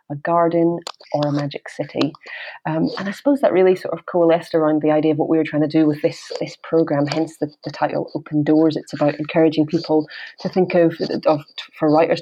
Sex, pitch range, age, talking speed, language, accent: female, 155-185 Hz, 30-49, 225 wpm, English, British